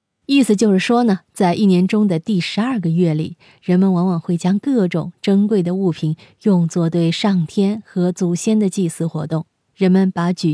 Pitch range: 170-225 Hz